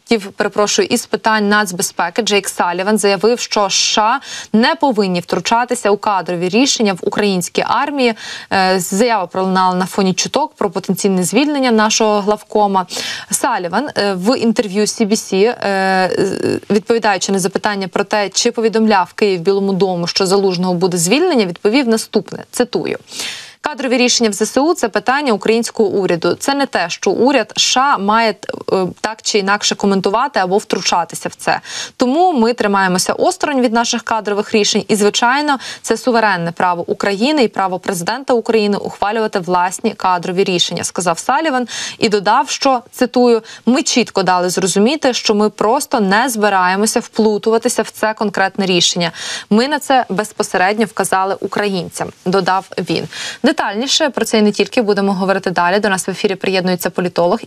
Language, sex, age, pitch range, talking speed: Ukrainian, female, 20-39, 195-235 Hz, 145 wpm